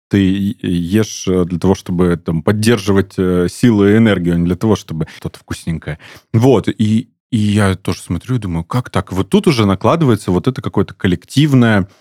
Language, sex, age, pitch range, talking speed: Russian, male, 30-49, 90-125 Hz, 165 wpm